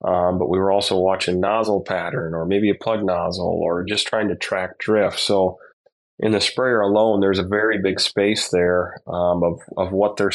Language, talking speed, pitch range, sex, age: English, 205 wpm, 95-105 Hz, male, 30-49